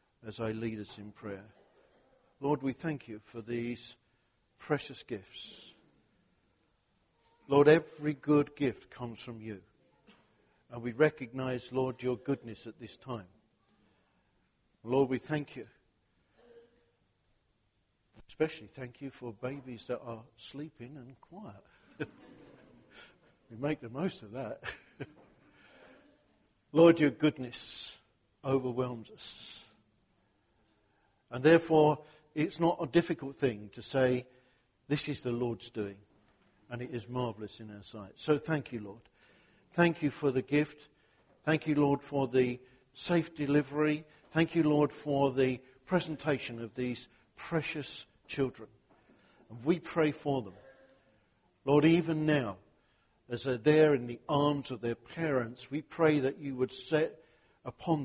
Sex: male